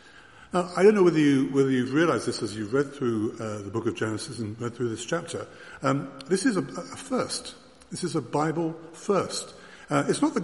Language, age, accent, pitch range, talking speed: English, 50-69, British, 120-160 Hz, 225 wpm